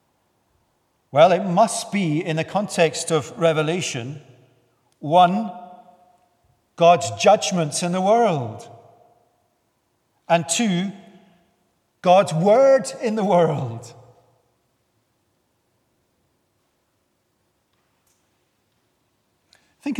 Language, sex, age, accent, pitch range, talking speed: English, male, 40-59, British, 145-200 Hz, 70 wpm